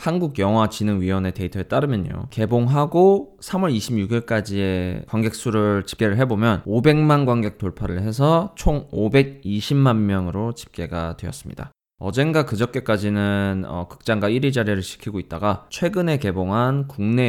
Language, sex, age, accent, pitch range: Korean, male, 20-39, native, 95-135 Hz